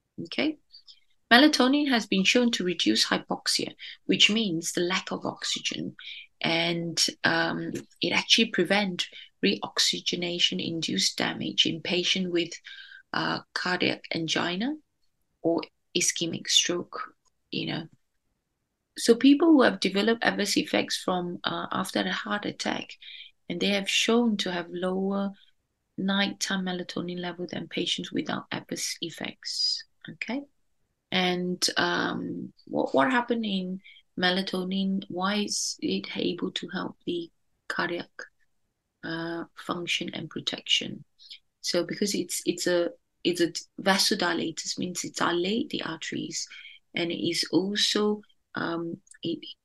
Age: 30-49